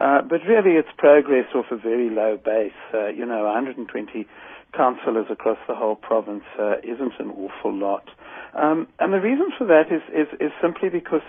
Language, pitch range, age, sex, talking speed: English, 120-160 Hz, 60-79, male, 185 wpm